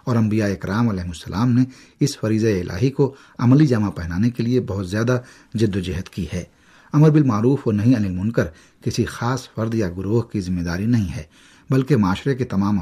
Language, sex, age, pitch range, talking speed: Urdu, male, 50-69, 95-125 Hz, 195 wpm